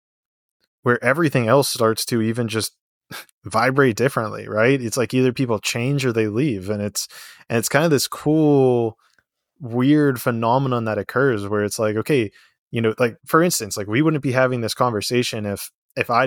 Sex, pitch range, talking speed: male, 105-125 Hz, 180 wpm